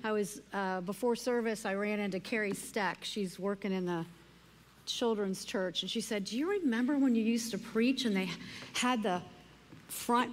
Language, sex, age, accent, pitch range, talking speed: English, female, 50-69, American, 180-240 Hz, 185 wpm